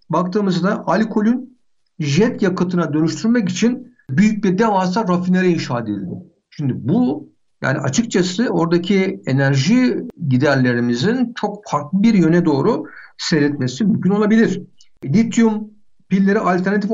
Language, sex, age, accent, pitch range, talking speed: Turkish, male, 60-79, native, 155-210 Hz, 105 wpm